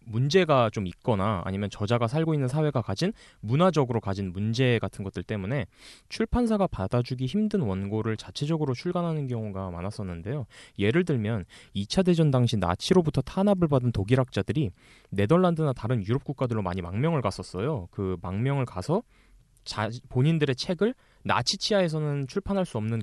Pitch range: 100-150 Hz